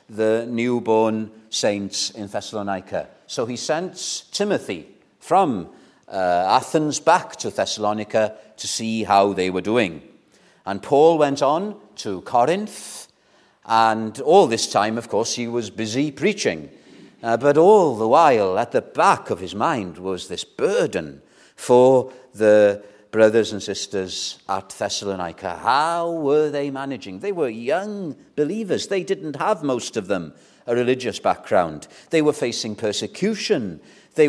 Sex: male